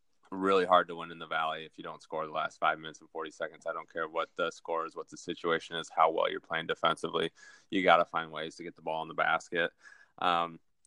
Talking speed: 260 wpm